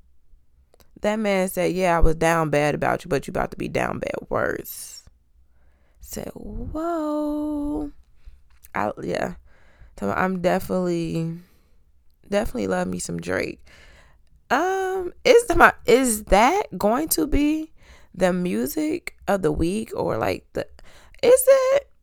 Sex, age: female, 20-39